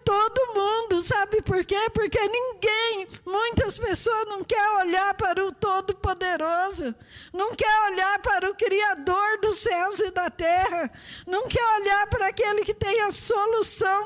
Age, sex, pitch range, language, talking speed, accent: 50-69, female, 335-420 Hz, Portuguese, 155 wpm, Brazilian